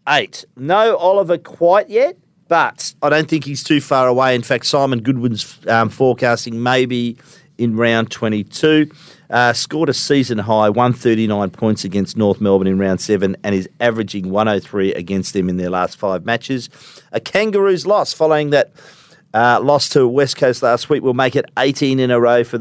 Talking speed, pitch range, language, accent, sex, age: 180 wpm, 110-135 Hz, English, Australian, male, 50-69